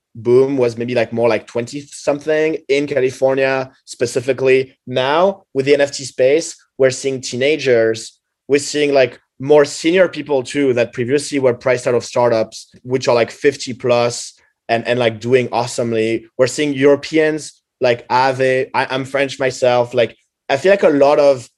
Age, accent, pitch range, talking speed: 20-39, French, 120-140 Hz, 160 wpm